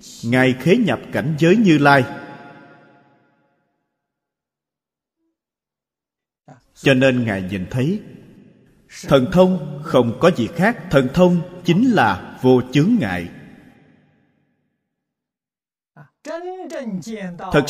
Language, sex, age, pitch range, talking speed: Vietnamese, male, 30-49, 125-185 Hz, 90 wpm